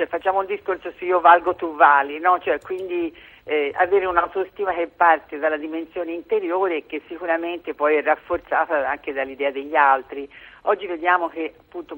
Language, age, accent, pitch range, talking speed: Italian, 50-69, native, 155-190 Hz, 170 wpm